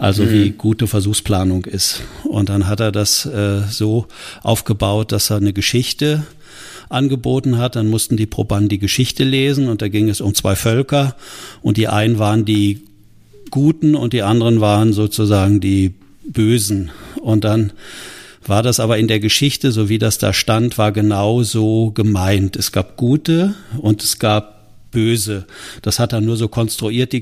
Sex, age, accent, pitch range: male, 50-69, German, 105-120 Hz